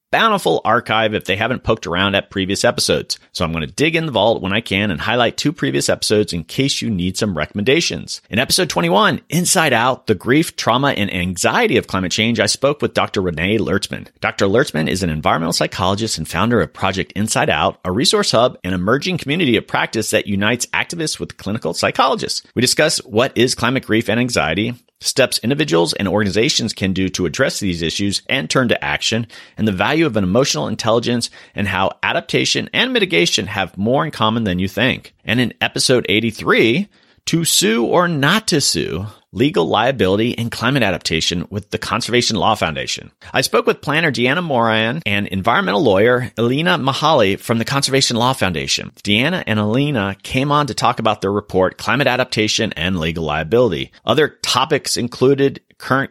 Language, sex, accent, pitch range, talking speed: English, male, American, 100-130 Hz, 185 wpm